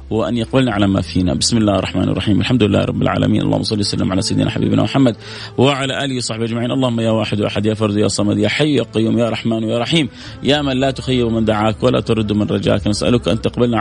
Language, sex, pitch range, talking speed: English, male, 110-145 Hz, 230 wpm